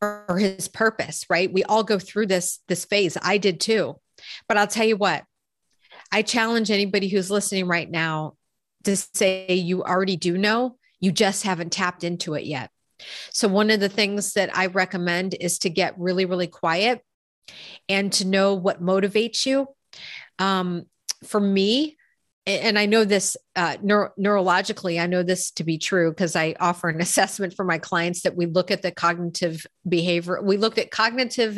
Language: English